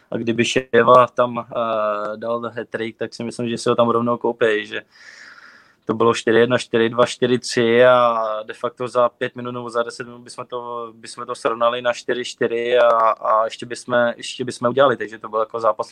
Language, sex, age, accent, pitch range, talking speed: Czech, male, 20-39, native, 115-125 Hz, 185 wpm